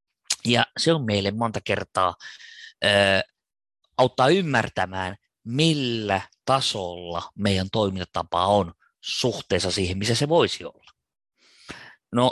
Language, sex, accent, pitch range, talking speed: Finnish, male, native, 100-135 Hz, 100 wpm